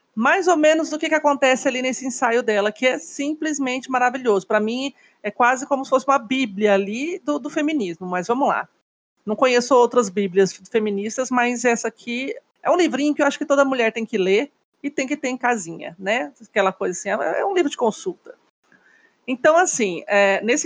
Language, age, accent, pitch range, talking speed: Portuguese, 40-59, Brazilian, 215-290 Hz, 200 wpm